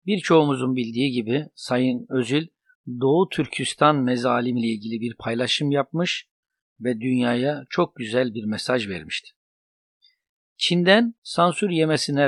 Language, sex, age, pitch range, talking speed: Turkish, male, 60-79, 120-160 Hz, 110 wpm